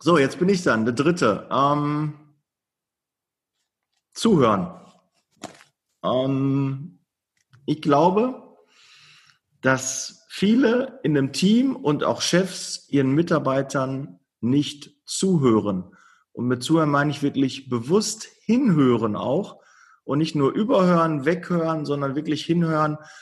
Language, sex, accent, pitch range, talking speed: German, male, German, 130-165 Hz, 105 wpm